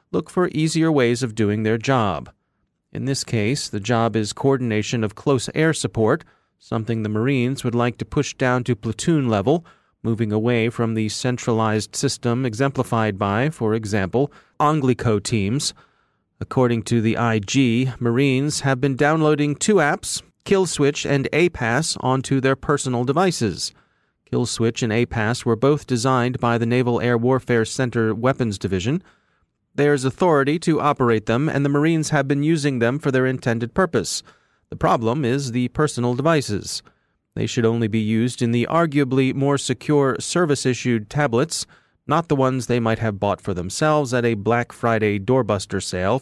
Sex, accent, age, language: male, American, 30-49, English